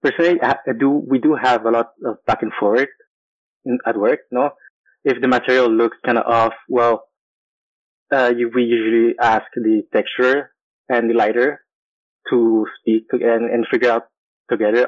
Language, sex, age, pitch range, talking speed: English, male, 20-39, 110-125 Hz, 160 wpm